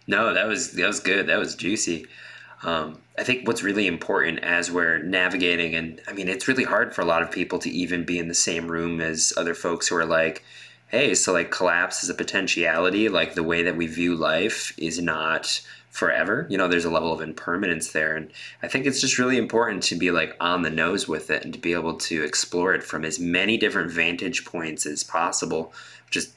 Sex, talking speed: male, 225 wpm